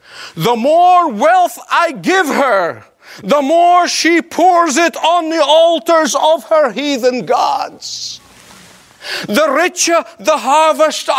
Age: 50-69